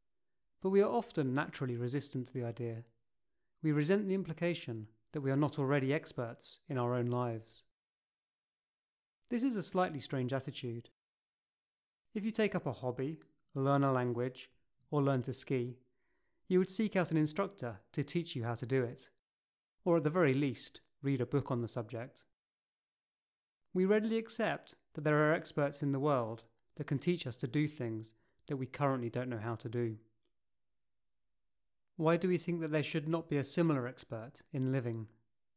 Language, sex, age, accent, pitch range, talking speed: English, male, 30-49, British, 120-155 Hz, 175 wpm